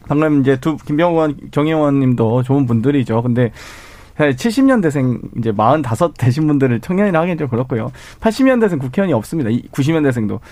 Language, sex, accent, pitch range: Korean, male, native, 120-165 Hz